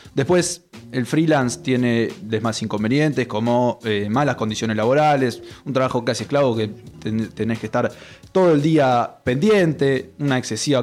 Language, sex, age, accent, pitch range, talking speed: Spanish, male, 20-39, Argentinian, 115-155 Hz, 140 wpm